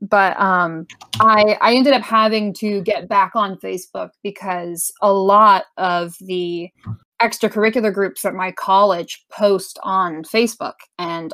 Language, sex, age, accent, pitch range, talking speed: English, female, 20-39, American, 180-215 Hz, 140 wpm